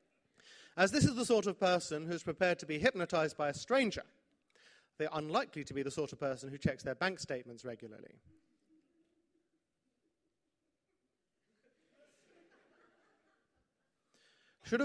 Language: English